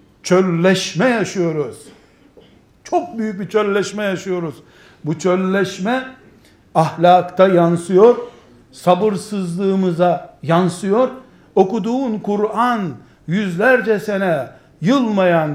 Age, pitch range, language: 60-79, 180-230 Hz, Turkish